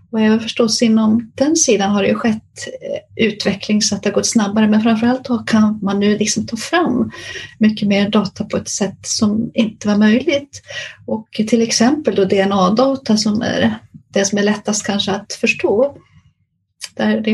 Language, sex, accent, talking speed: Swedish, female, native, 175 wpm